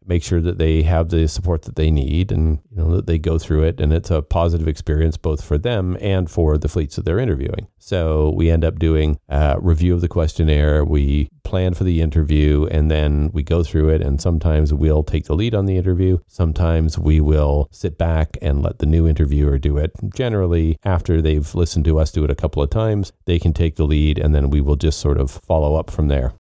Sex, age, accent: male, 40-59, American